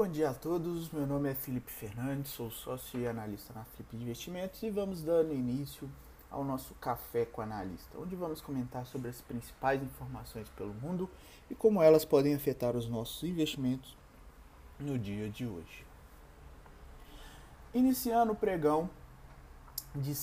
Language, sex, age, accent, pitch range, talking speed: Portuguese, male, 20-39, Brazilian, 125-165 Hz, 150 wpm